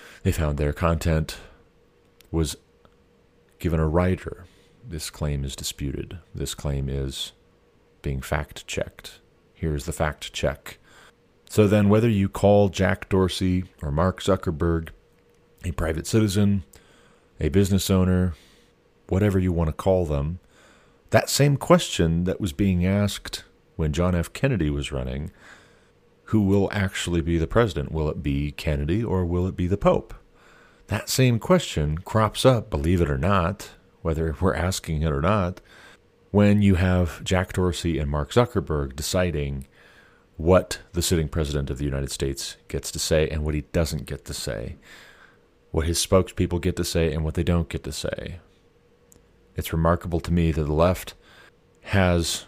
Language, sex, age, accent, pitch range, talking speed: English, male, 40-59, American, 80-95 Hz, 155 wpm